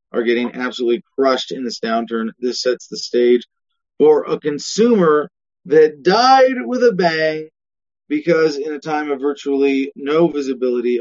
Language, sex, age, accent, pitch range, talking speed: English, male, 30-49, American, 130-190 Hz, 145 wpm